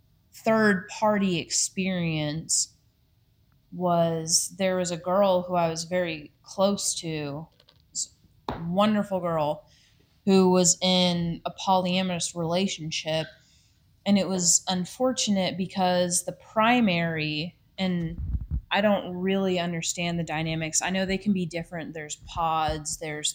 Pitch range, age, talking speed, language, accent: 160-185 Hz, 20-39, 115 wpm, English, American